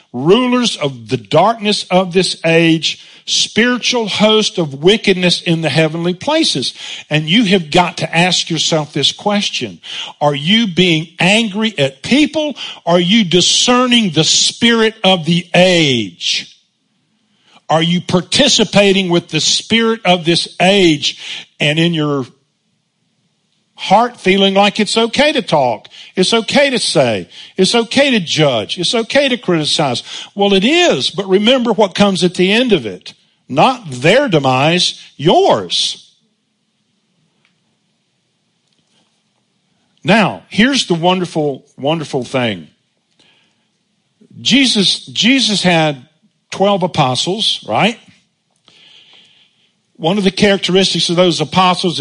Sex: male